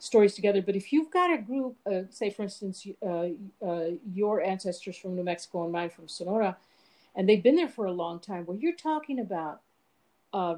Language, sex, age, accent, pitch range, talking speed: English, female, 50-69, American, 185-250 Hz, 205 wpm